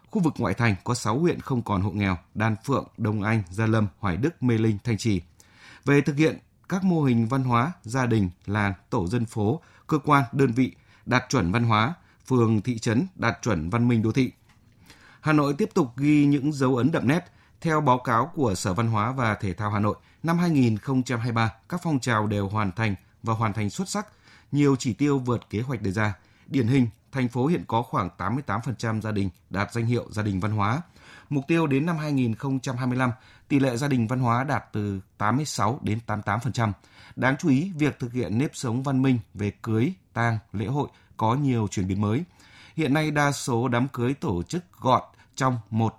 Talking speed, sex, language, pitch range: 210 wpm, male, Vietnamese, 105-135 Hz